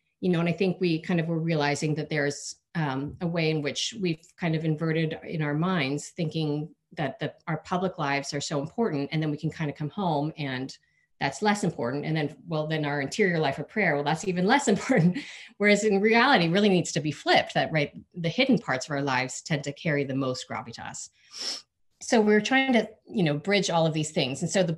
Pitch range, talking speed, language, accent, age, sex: 145-180 Hz, 230 wpm, English, American, 40-59, female